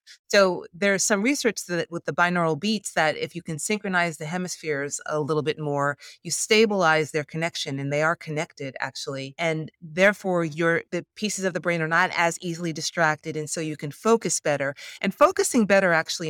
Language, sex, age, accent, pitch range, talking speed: English, female, 40-59, American, 145-180 Hz, 190 wpm